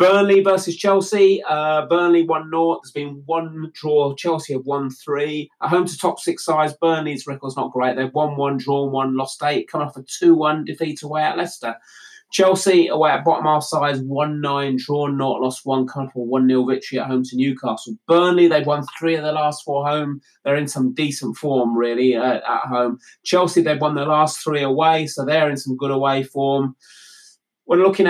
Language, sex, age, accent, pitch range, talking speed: English, male, 20-39, British, 135-160 Hz, 195 wpm